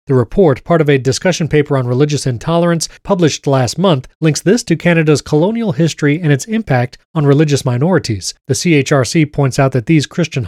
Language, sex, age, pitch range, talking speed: English, male, 30-49, 135-170 Hz, 185 wpm